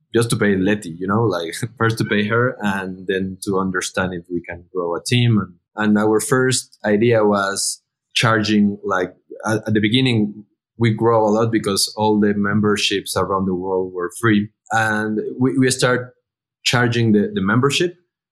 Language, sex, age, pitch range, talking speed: English, male, 20-39, 95-120 Hz, 175 wpm